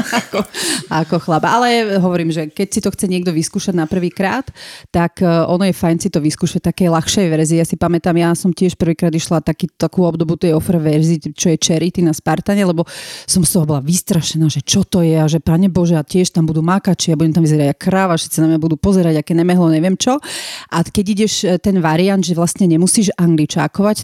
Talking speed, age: 215 wpm, 30-49